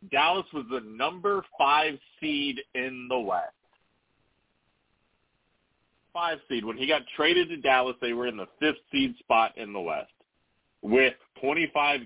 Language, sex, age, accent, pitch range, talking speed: English, male, 30-49, American, 125-160 Hz, 145 wpm